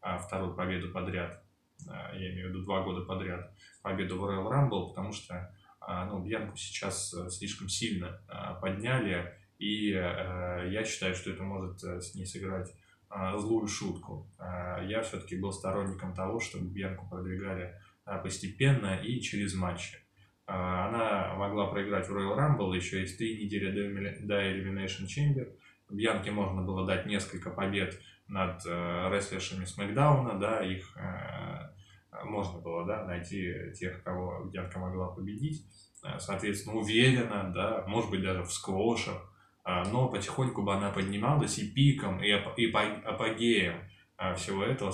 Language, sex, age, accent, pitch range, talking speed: Russian, male, 10-29, native, 95-105 Hz, 140 wpm